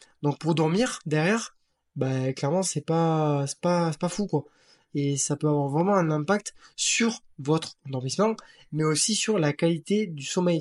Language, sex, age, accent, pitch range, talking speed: French, male, 20-39, French, 145-180 Hz, 180 wpm